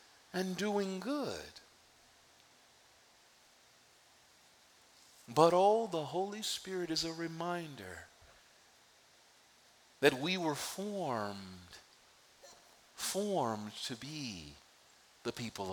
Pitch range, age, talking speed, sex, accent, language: 145-220 Hz, 50-69, 75 wpm, male, American, English